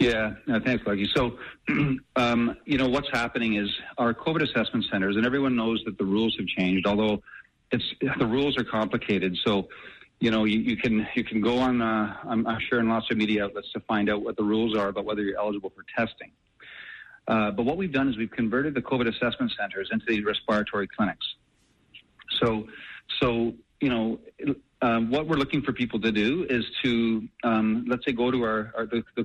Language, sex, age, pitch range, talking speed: English, male, 40-59, 105-120 Hz, 205 wpm